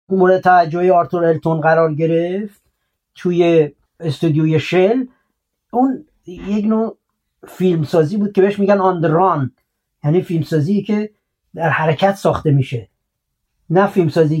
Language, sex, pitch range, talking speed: Persian, male, 160-195 Hz, 115 wpm